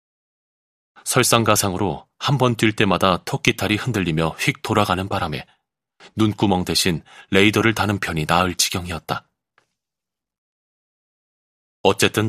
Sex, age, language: male, 30-49, Korean